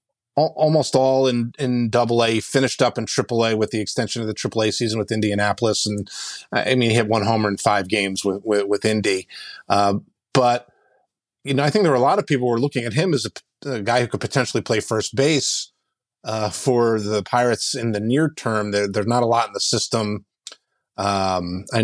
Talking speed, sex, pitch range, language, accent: 215 wpm, male, 105-130 Hz, English, American